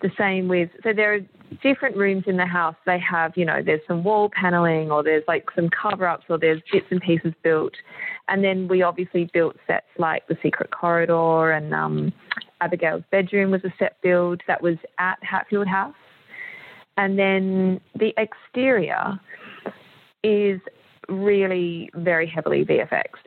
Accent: Australian